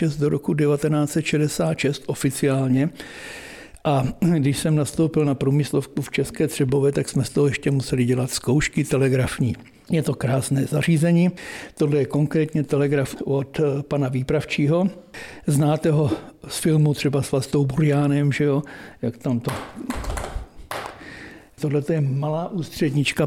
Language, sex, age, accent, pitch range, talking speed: Czech, male, 60-79, native, 140-160 Hz, 130 wpm